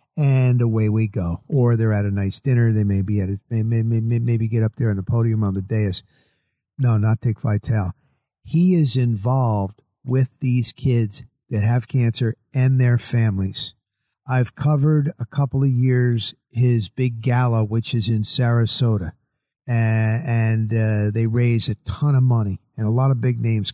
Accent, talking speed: American, 180 wpm